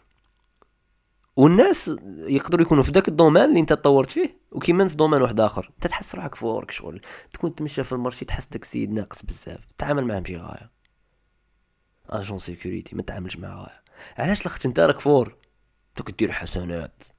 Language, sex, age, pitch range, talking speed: Arabic, male, 20-39, 95-130 Hz, 155 wpm